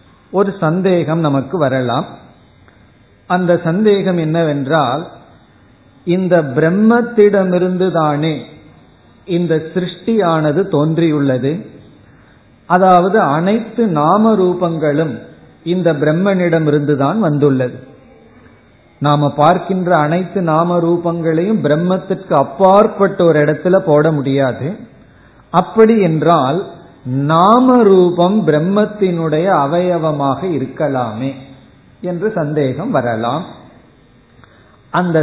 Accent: native